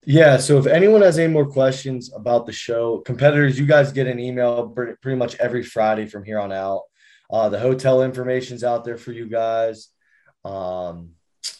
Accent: American